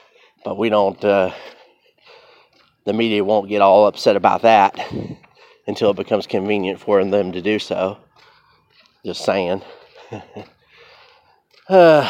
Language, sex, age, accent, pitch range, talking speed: English, male, 30-49, American, 105-155 Hz, 120 wpm